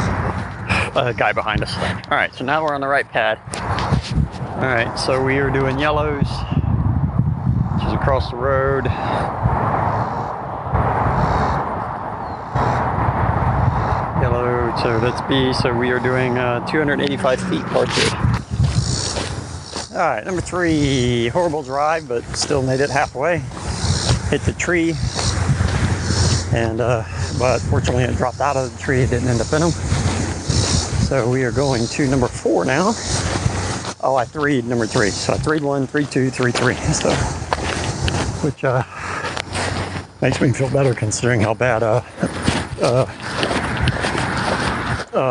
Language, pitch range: English, 110-135 Hz